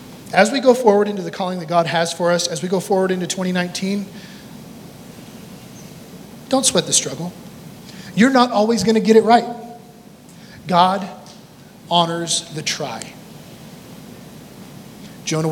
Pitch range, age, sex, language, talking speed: 170-210 Hz, 30-49, male, English, 135 wpm